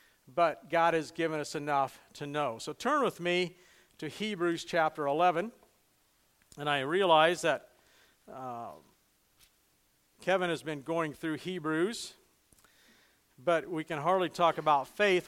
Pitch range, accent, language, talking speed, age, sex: 160-200 Hz, American, English, 135 wpm, 50-69, male